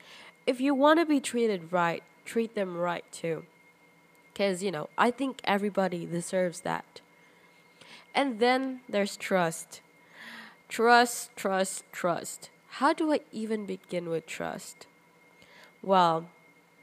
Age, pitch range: 10-29, 170-225 Hz